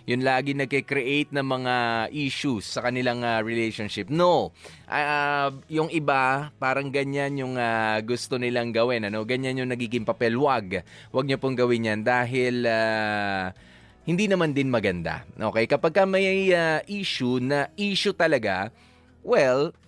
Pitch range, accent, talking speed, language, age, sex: 110-140 Hz, Filipino, 150 wpm, English, 20-39, male